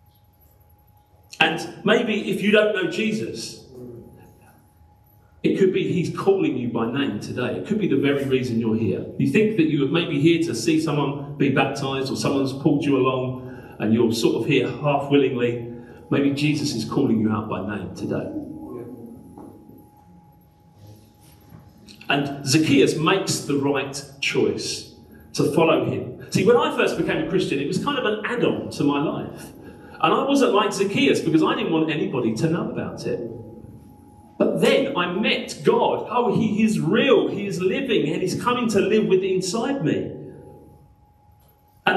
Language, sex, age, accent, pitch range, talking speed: English, male, 40-59, British, 105-170 Hz, 165 wpm